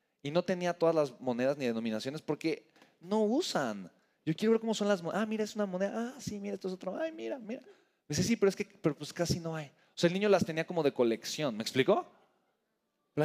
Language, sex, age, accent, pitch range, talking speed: Spanish, male, 30-49, Mexican, 145-205 Hz, 250 wpm